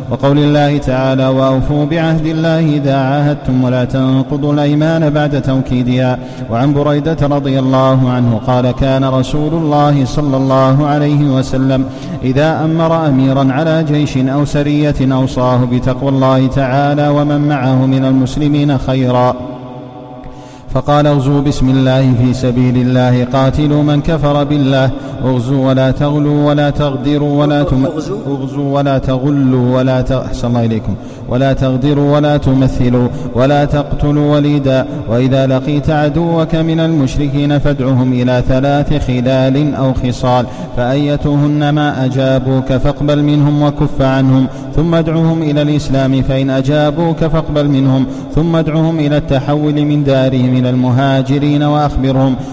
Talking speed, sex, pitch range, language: 120 wpm, male, 130-145 Hz, Arabic